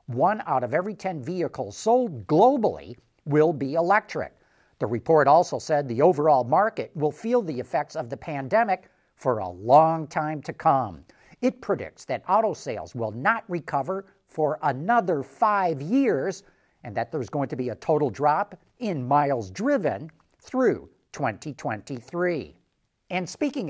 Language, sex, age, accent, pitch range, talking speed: English, male, 50-69, American, 140-195 Hz, 150 wpm